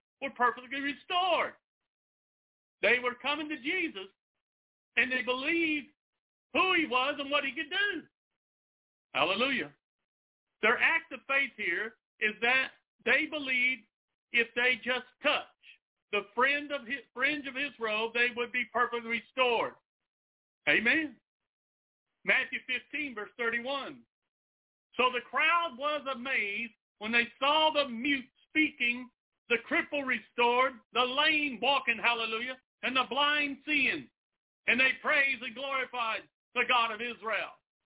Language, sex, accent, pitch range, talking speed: English, male, American, 235-285 Hz, 125 wpm